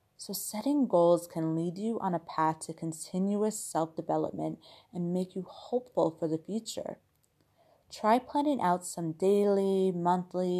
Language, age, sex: English, 30-49, female